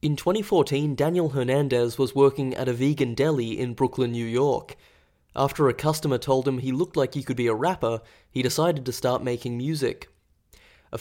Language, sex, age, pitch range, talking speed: English, male, 20-39, 120-150 Hz, 185 wpm